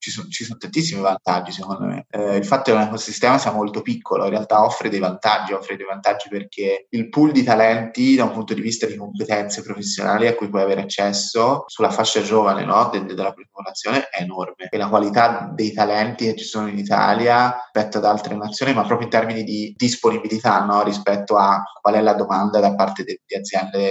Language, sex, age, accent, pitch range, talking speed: Italian, male, 20-39, native, 105-120 Hz, 210 wpm